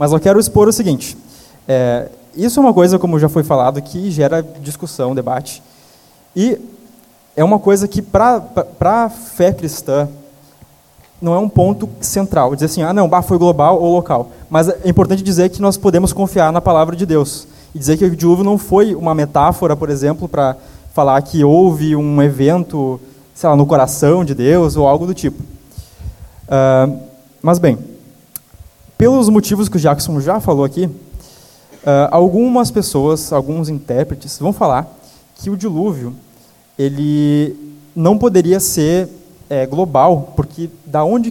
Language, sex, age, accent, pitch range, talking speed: Portuguese, male, 20-39, Brazilian, 140-190 Hz, 155 wpm